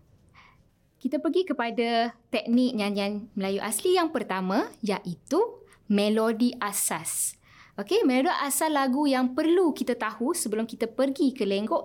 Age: 20-39